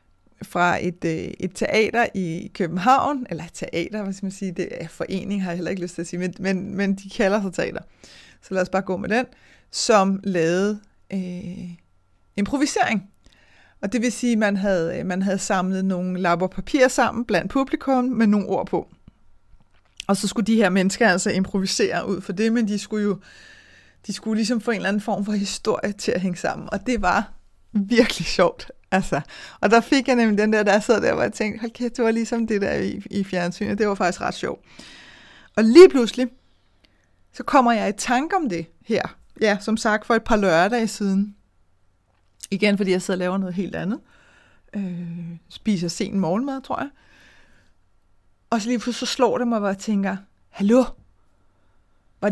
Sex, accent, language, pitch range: female, native, Danish, 180-225 Hz